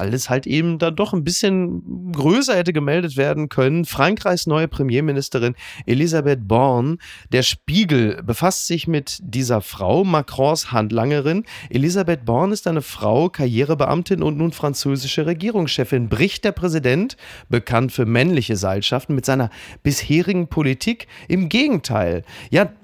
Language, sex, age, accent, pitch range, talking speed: German, male, 30-49, German, 120-165 Hz, 130 wpm